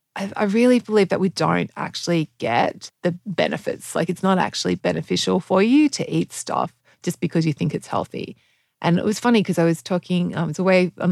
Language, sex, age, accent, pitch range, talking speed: English, female, 30-49, Australian, 170-210 Hz, 205 wpm